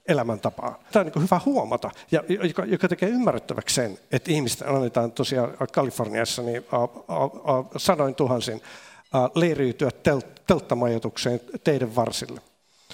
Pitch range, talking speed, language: 120-160 Hz, 135 wpm, Finnish